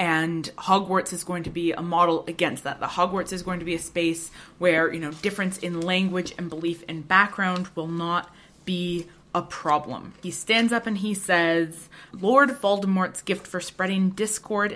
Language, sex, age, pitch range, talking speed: English, female, 20-39, 165-195 Hz, 185 wpm